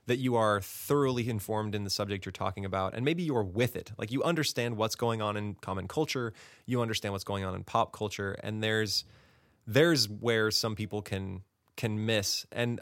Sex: male